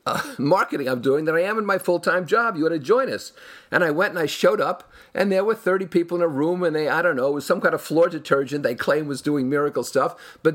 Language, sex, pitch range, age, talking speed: English, male, 145-185 Hz, 50-69, 285 wpm